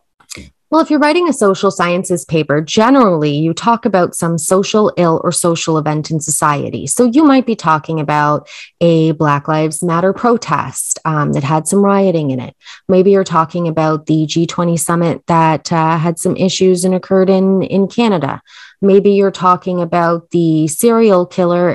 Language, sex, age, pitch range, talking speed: English, female, 20-39, 160-205 Hz, 170 wpm